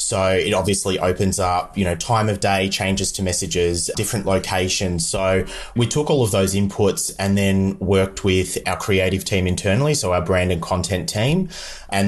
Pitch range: 90-105 Hz